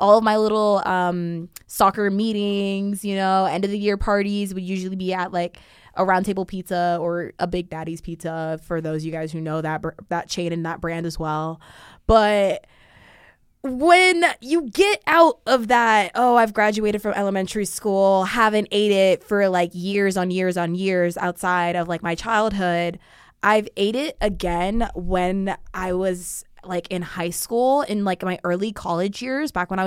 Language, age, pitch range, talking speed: English, 20-39, 175-220 Hz, 185 wpm